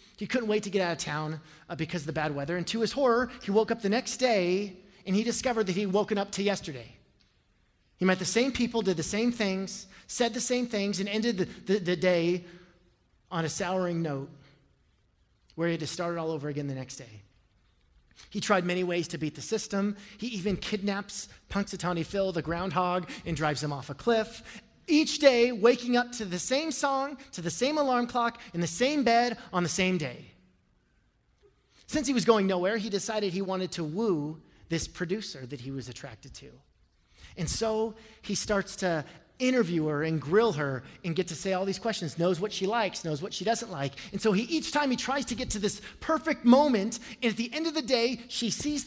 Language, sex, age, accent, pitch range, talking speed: English, male, 30-49, American, 170-235 Hz, 215 wpm